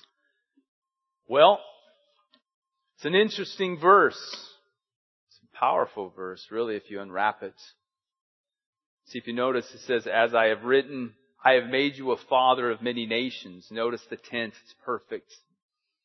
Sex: male